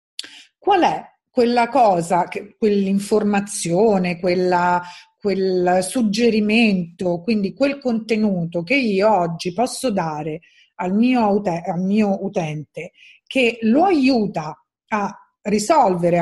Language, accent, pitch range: Italian, native, 180-245 Hz